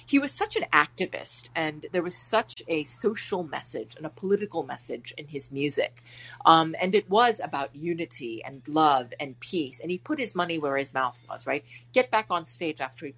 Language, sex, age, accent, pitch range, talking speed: English, female, 30-49, American, 135-195 Hz, 205 wpm